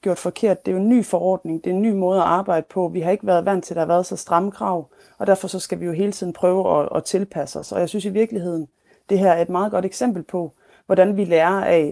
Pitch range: 170-205 Hz